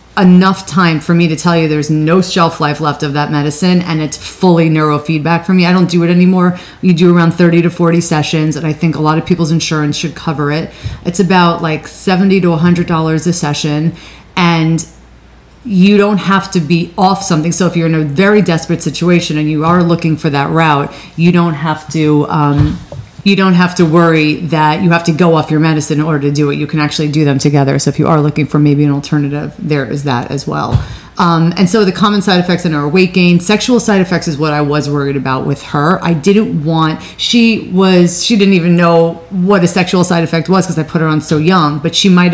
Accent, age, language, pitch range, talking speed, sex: American, 30-49, English, 155-180 Hz, 235 wpm, female